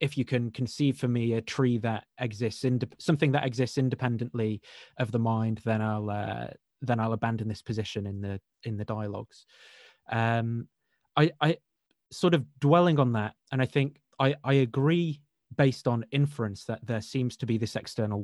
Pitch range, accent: 115-140 Hz, British